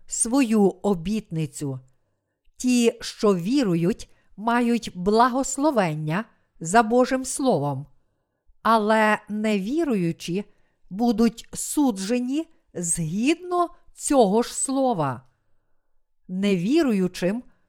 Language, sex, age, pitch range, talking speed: Ukrainian, female, 50-69, 175-250 Hz, 65 wpm